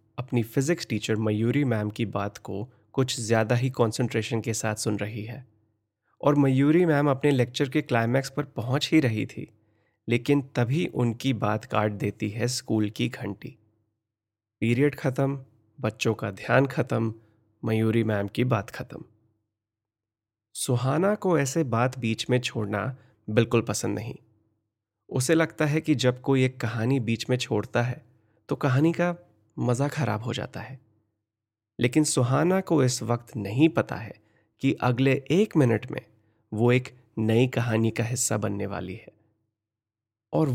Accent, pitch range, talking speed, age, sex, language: native, 110-140 Hz, 150 wpm, 30-49, male, Hindi